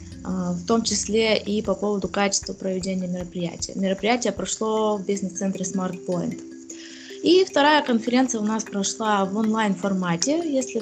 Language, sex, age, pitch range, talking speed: Russian, female, 20-39, 190-220 Hz, 135 wpm